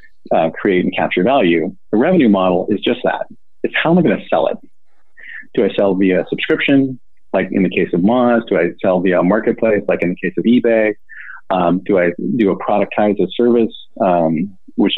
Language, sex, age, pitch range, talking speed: English, male, 40-59, 95-140 Hz, 210 wpm